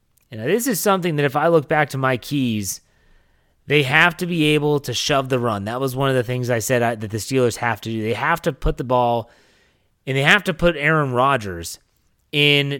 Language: English